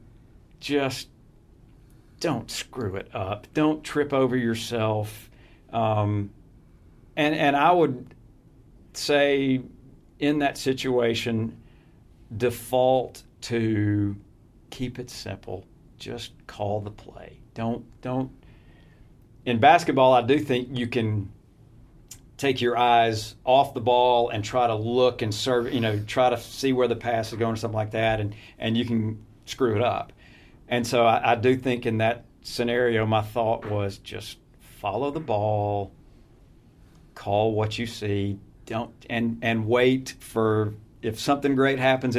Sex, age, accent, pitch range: male, 50-69, American, 110-130 Hz